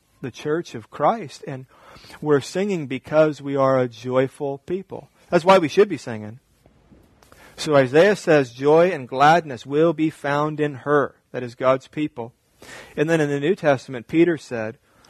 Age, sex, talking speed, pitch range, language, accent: 40-59, male, 165 wpm, 140-185 Hz, English, American